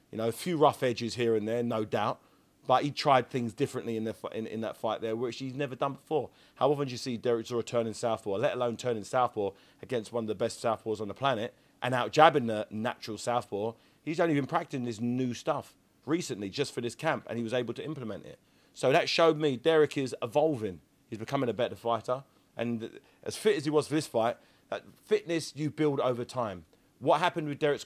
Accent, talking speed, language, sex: British, 230 wpm, English, male